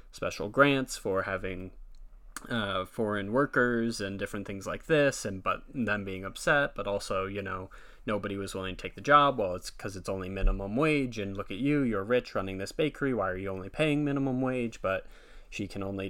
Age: 20-39